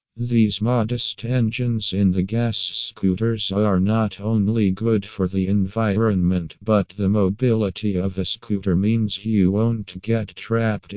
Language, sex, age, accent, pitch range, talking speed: English, male, 50-69, American, 95-110 Hz, 135 wpm